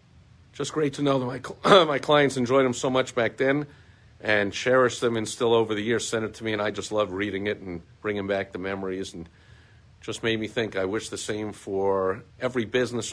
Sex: male